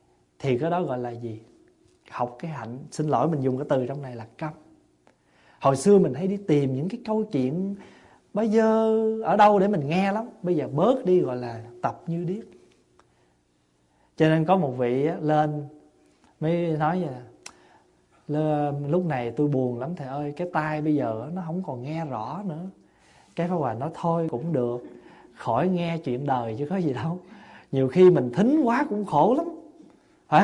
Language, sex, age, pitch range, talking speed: Vietnamese, male, 20-39, 130-185 Hz, 195 wpm